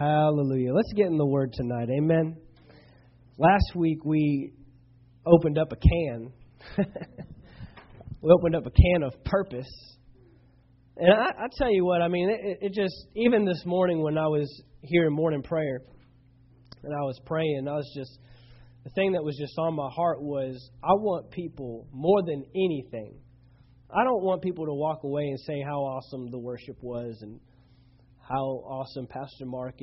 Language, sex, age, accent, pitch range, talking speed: English, male, 20-39, American, 125-180 Hz, 170 wpm